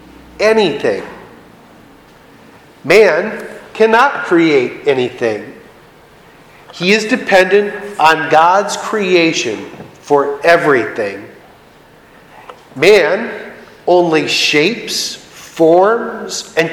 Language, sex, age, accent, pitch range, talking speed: English, male, 40-59, American, 170-215 Hz, 65 wpm